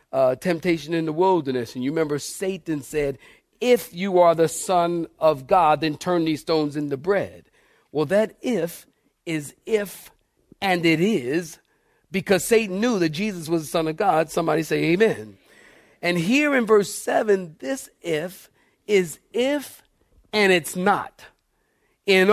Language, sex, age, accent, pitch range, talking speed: English, male, 50-69, American, 155-200 Hz, 155 wpm